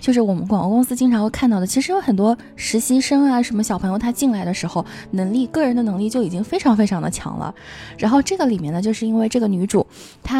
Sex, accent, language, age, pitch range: female, native, Chinese, 20-39, 195-245 Hz